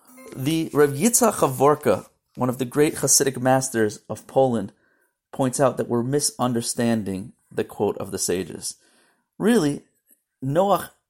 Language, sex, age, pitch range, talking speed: English, male, 30-49, 130-180 Hz, 125 wpm